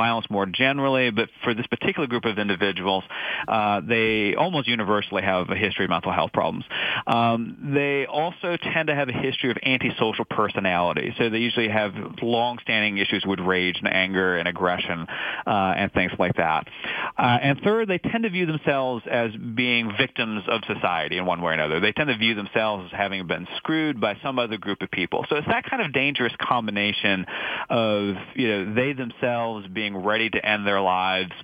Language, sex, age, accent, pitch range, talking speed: English, male, 40-59, American, 95-125 Hz, 190 wpm